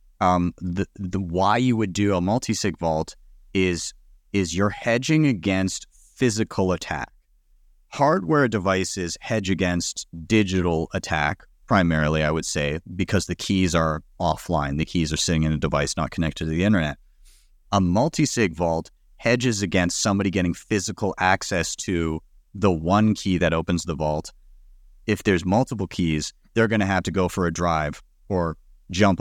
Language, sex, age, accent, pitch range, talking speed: English, male, 30-49, American, 85-110 Hz, 155 wpm